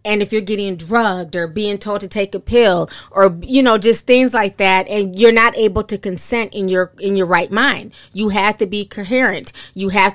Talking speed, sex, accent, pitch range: 225 wpm, female, American, 185-220 Hz